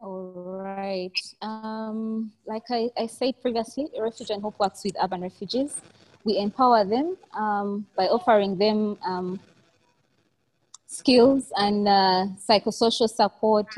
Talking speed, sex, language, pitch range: 120 wpm, female, English, 185-220 Hz